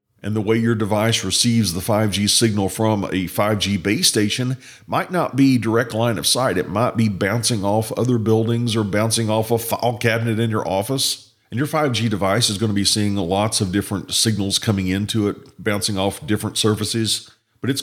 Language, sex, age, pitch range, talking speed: English, male, 40-59, 105-120 Hz, 200 wpm